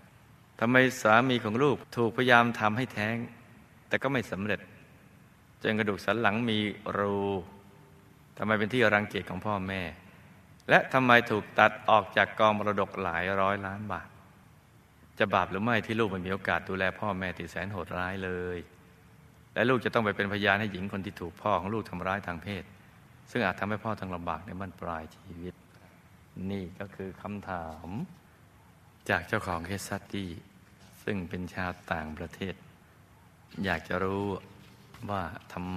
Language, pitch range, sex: Thai, 90-110 Hz, male